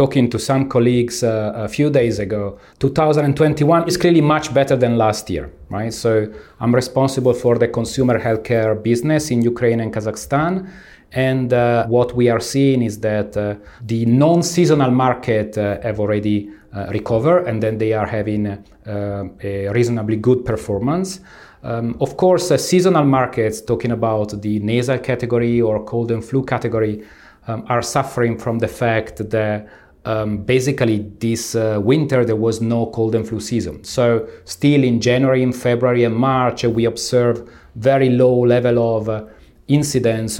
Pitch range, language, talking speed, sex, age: 110-130 Hz, Ukrainian, 160 wpm, male, 30-49